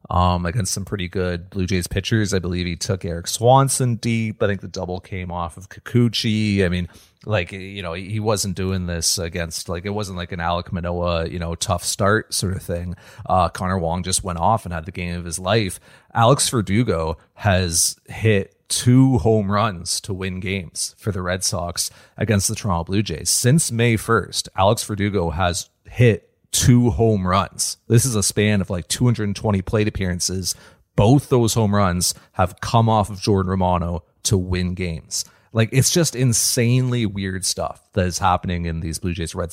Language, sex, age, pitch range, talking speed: English, male, 30-49, 90-110 Hz, 190 wpm